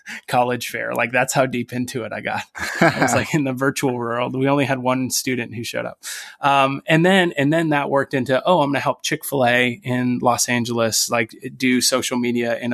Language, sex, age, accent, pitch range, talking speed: English, male, 20-39, American, 120-135 Hz, 215 wpm